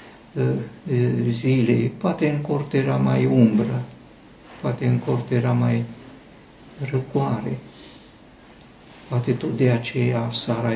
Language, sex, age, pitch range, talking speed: Romanian, male, 60-79, 115-135 Hz, 100 wpm